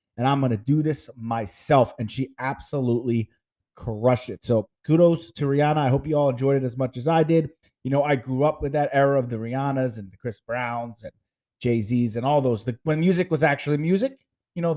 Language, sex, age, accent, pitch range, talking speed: English, male, 30-49, American, 120-150 Hz, 220 wpm